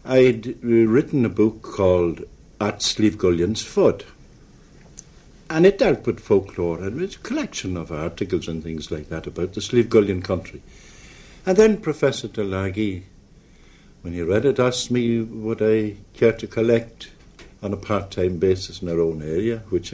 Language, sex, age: English, male, 60-79